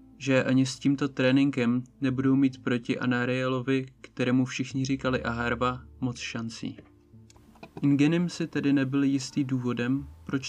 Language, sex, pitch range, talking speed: Czech, male, 115-130 Hz, 125 wpm